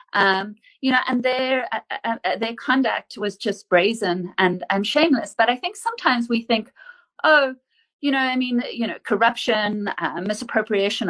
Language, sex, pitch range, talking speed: English, female, 205-260 Hz, 170 wpm